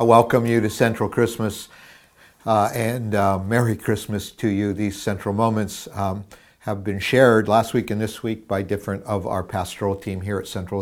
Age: 50-69